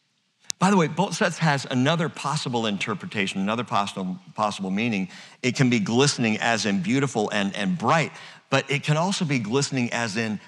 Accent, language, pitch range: American, English, 110-160 Hz